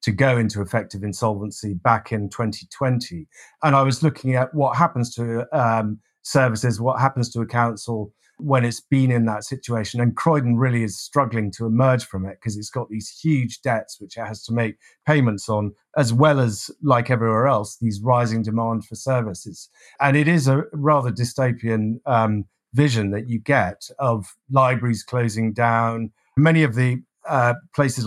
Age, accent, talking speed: 50-69, British, 175 wpm